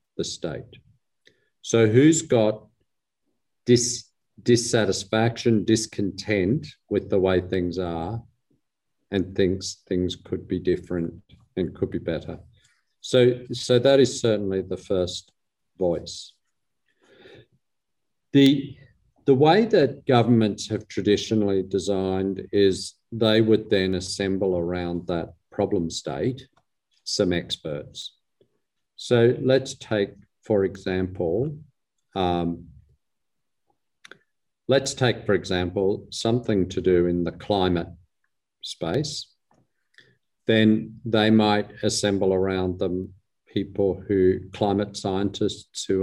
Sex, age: male, 50-69